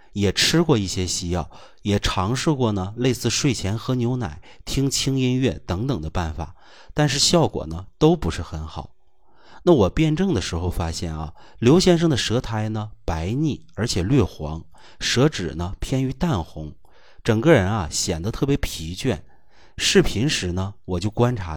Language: Chinese